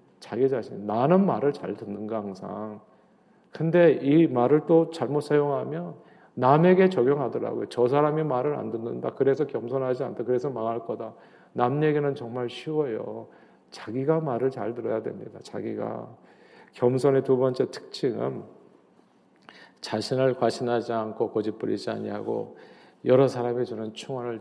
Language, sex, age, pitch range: Korean, male, 40-59, 115-140 Hz